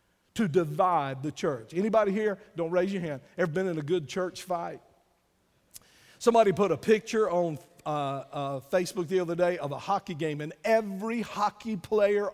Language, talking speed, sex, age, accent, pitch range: English, 175 wpm, male, 50-69, American, 150-190 Hz